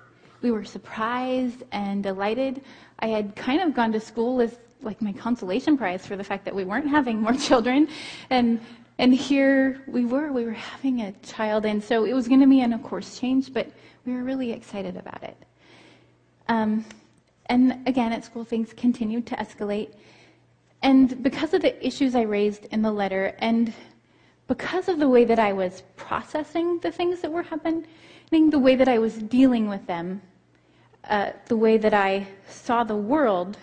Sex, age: female, 30-49